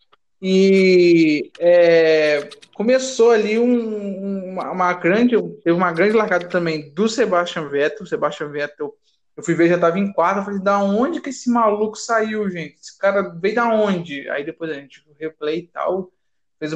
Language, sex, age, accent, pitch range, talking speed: Portuguese, male, 20-39, Brazilian, 175-235 Hz, 165 wpm